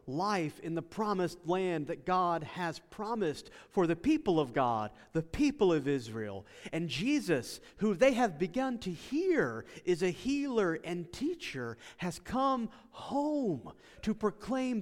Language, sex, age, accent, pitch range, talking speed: English, male, 40-59, American, 145-230 Hz, 145 wpm